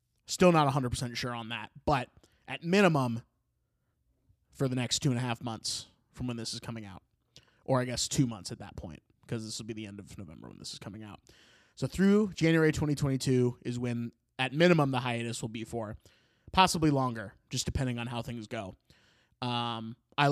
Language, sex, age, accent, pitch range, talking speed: English, male, 20-39, American, 115-160 Hz, 200 wpm